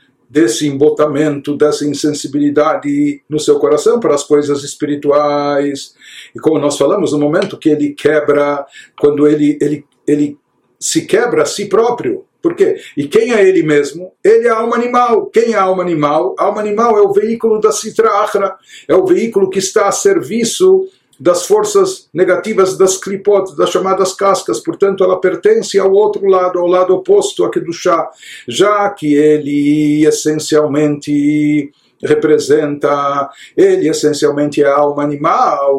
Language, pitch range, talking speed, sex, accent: Portuguese, 145-215 Hz, 150 wpm, male, Brazilian